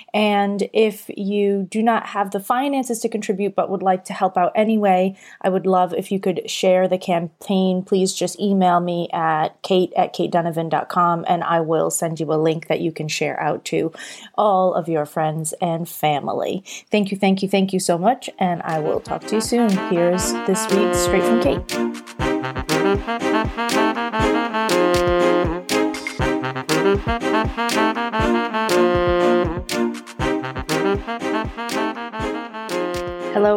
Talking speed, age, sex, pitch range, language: 135 wpm, 30-49, female, 165-195 Hz, English